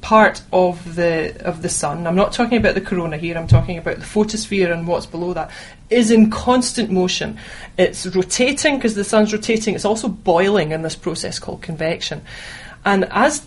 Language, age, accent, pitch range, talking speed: English, 30-49, British, 180-220 Hz, 185 wpm